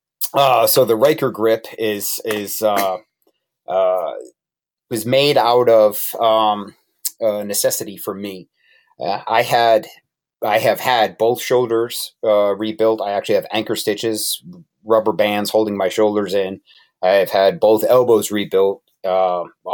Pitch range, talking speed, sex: 100-120 Hz, 135 wpm, male